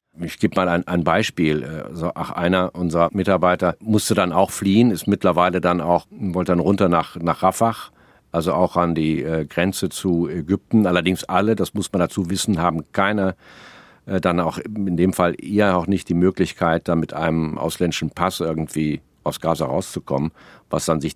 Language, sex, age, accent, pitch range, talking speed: German, male, 50-69, German, 85-95 Hz, 180 wpm